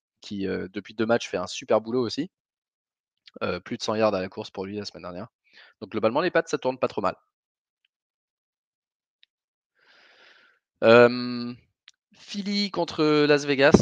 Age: 20-39